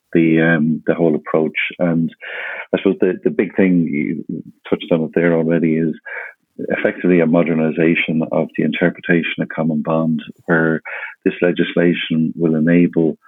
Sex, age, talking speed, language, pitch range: male, 50-69, 150 wpm, English, 80-90 Hz